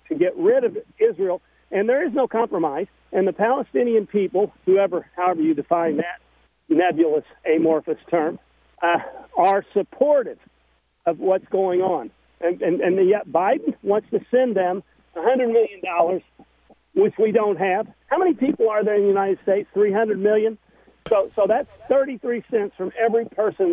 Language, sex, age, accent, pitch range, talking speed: English, male, 50-69, American, 185-265 Hz, 160 wpm